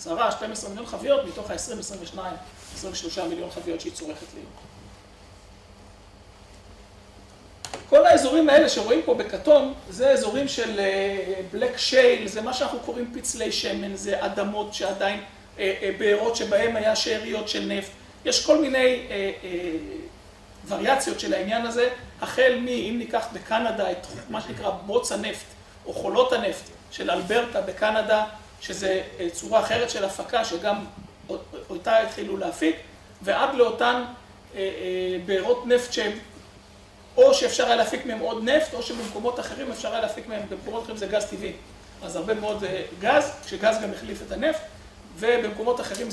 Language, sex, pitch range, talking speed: Hebrew, male, 195-260 Hz, 135 wpm